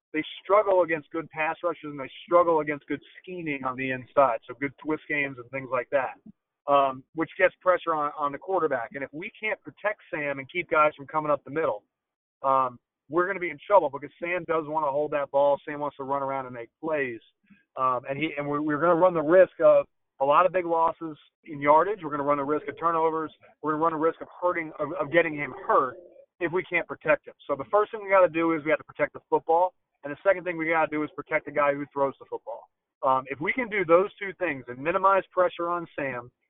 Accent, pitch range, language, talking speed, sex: American, 145-180 Hz, English, 260 wpm, male